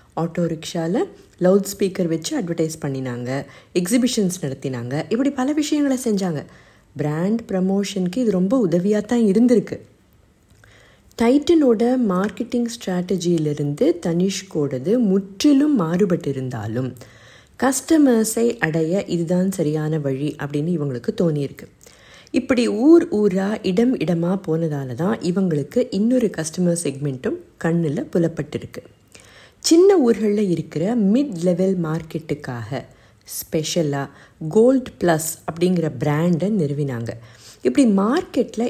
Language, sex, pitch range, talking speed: Tamil, female, 145-210 Hz, 95 wpm